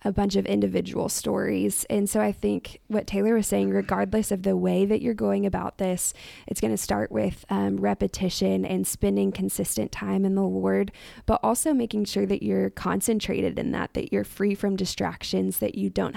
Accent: American